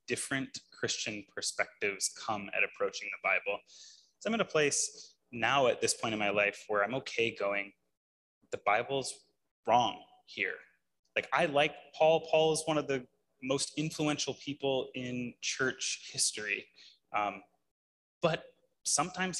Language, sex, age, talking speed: English, male, 20-39, 140 wpm